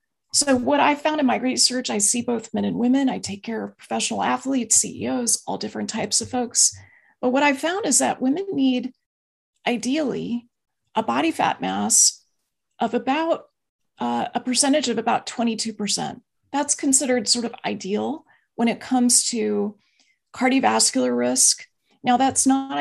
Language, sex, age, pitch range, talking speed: English, female, 30-49, 220-265 Hz, 160 wpm